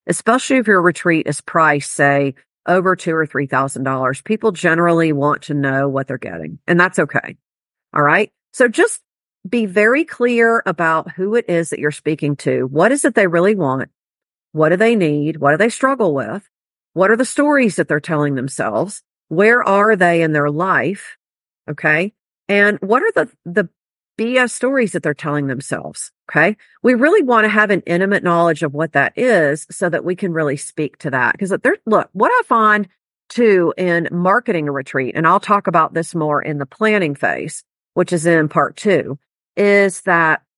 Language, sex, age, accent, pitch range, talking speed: English, female, 50-69, American, 150-210 Hz, 190 wpm